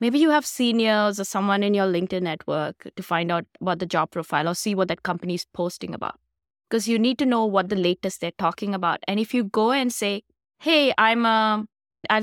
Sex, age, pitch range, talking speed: female, 20-39, 180-235 Hz, 220 wpm